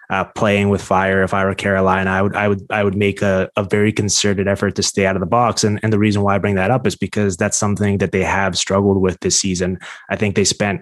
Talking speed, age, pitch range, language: 260 wpm, 20-39, 95-105 Hz, English